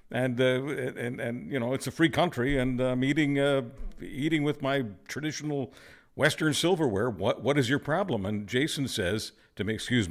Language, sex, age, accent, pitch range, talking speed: English, male, 60-79, American, 110-145 Hz, 180 wpm